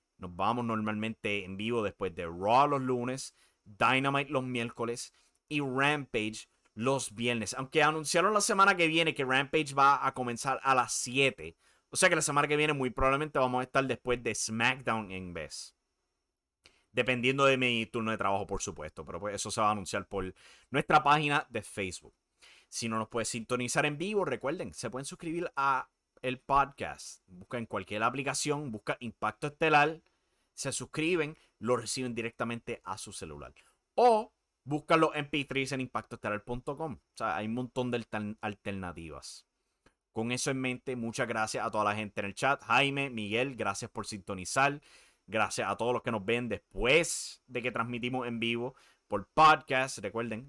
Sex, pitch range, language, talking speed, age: male, 110-140 Hz, Spanish, 170 wpm, 30-49